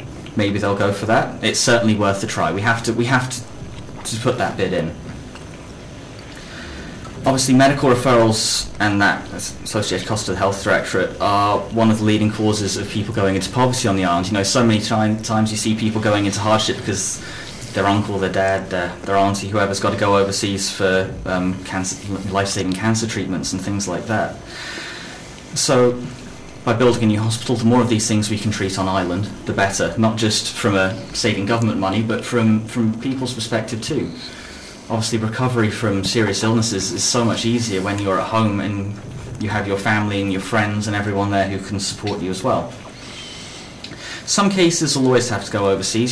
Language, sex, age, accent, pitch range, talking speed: English, male, 20-39, British, 95-115 Hz, 195 wpm